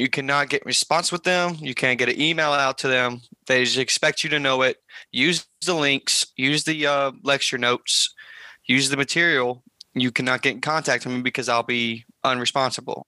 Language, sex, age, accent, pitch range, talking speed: English, male, 20-39, American, 125-145 Hz, 195 wpm